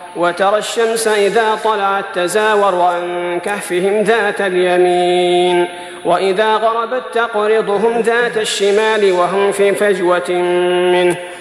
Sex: male